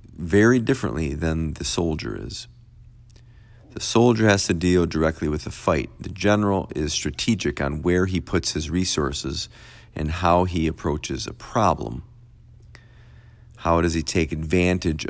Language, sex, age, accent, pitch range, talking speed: English, male, 40-59, American, 80-115 Hz, 145 wpm